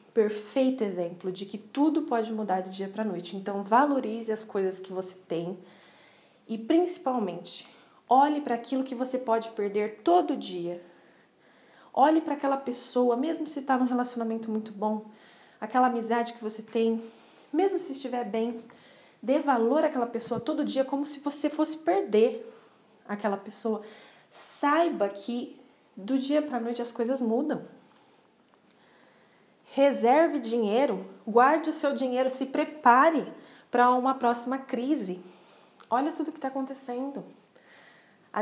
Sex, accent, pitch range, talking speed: female, Brazilian, 195-265 Hz, 140 wpm